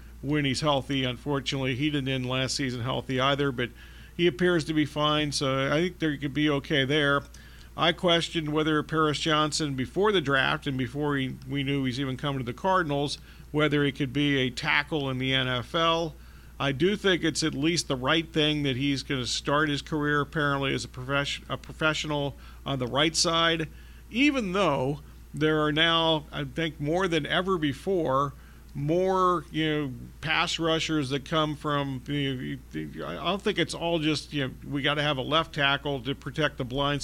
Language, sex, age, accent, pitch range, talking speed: English, male, 50-69, American, 135-160 Hz, 190 wpm